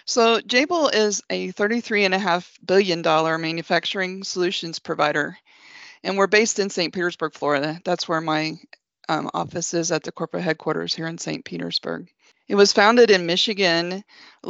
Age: 40-59